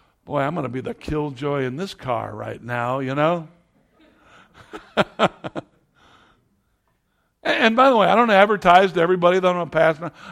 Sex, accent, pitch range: male, American, 125-165 Hz